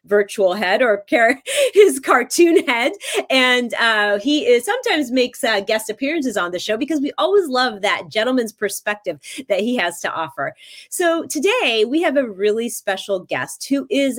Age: 30-49